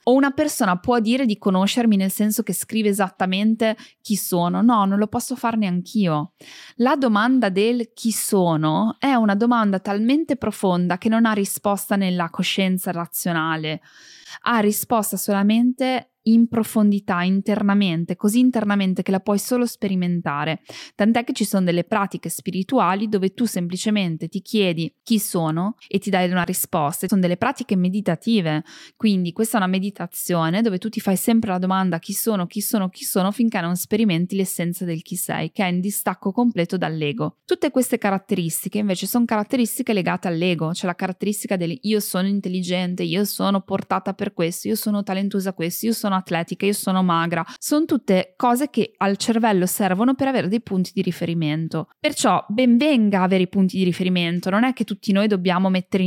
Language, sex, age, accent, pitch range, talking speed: Italian, female, 20-39, native, 180-220 Hz, 175 wpm